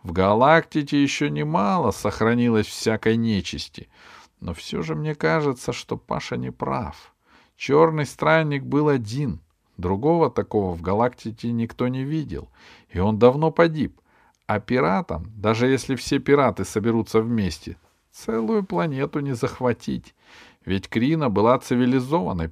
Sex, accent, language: male, native, Russian